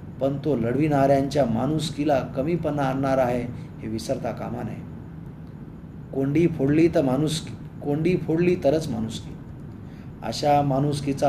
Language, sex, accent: Marathi, male, native